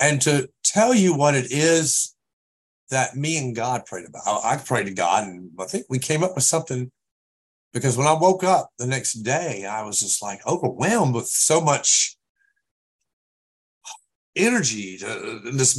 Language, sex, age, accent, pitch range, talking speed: English, male, 50-69, American, 115-195 Hz, 170 wpm